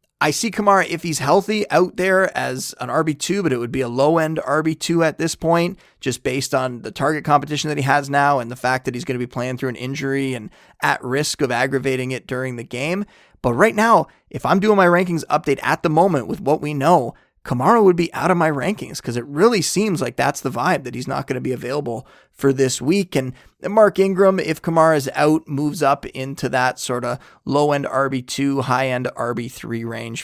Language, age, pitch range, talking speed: English, 30-49, 130-170 Hz, 220 wpm